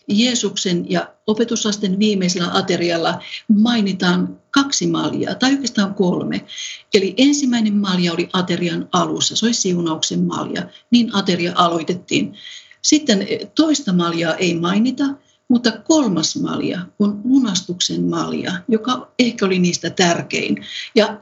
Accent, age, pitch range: native, 50-69, 175-225 Hz